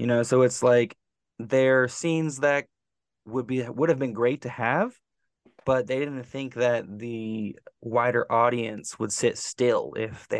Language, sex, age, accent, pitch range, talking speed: English, male, 20-39, American, 110-130 Hz, 165 wpm